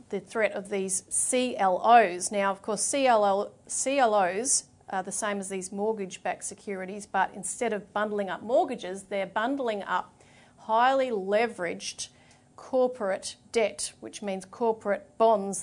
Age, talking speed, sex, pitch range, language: 40-59, 125 wpm, female, 195-240 Hz, English